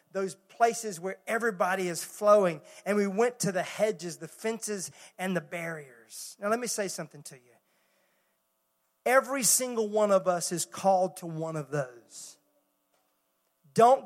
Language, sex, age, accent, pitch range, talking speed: English, male, 40-59, American, 175-240 Hz, 155 wpm